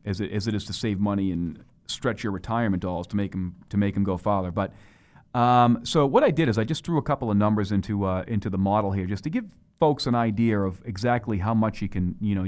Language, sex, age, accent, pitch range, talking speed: English, male, 40-59, American, 100-120 Hz, 265 wpm